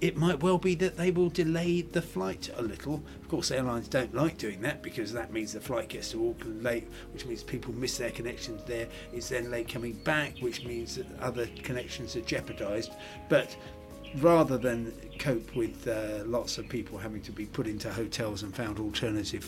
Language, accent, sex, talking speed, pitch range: English, British, male, 200 wpm, 110-155 Hz